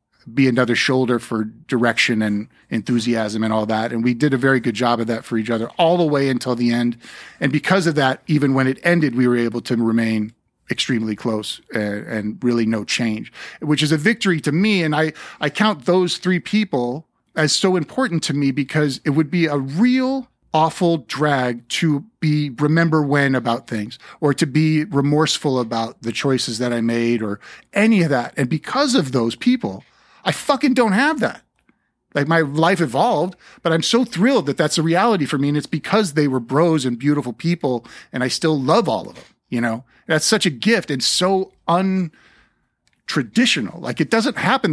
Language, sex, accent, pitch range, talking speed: English, male, American, 120-175 Hz, 195 wpm